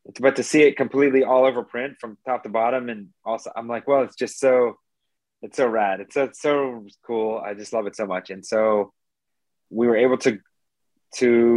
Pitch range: 105-130 Hz